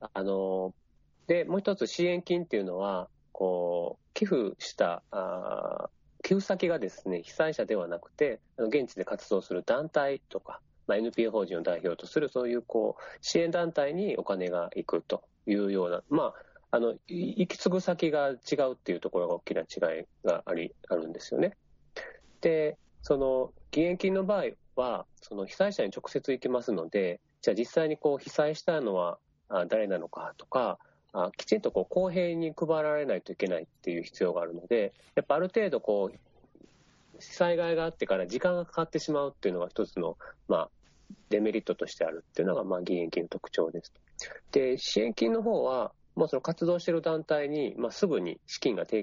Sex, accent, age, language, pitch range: male, native, 40-59, Japanese, 110-175 Hz